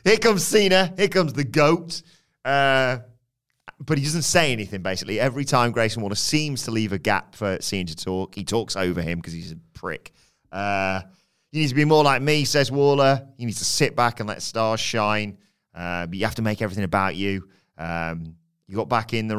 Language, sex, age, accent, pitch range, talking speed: English, male, 30-49, British, 95-130 Hz, 215 wpm